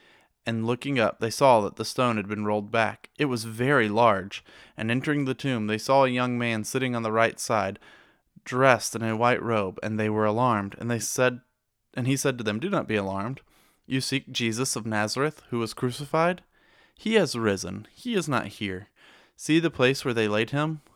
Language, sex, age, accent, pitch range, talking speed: English, male, 20-39, American, 105-130 Hz, 210 wpm